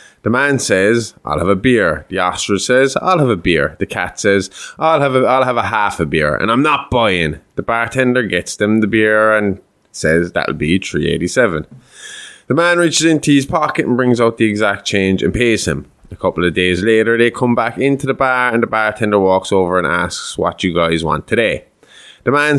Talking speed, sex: 225 wpm, male